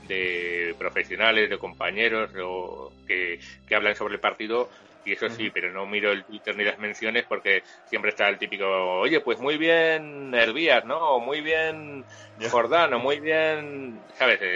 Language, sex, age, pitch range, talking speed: Spanish, male, 30-49, 100-120 Hz, 165 wpm